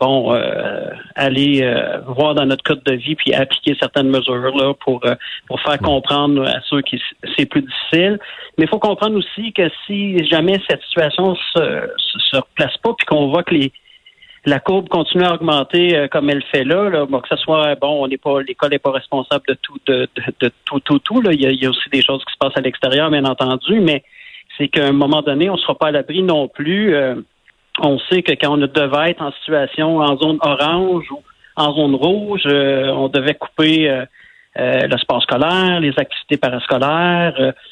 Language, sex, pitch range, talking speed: French, male, 140-170 Hz, 215 wpm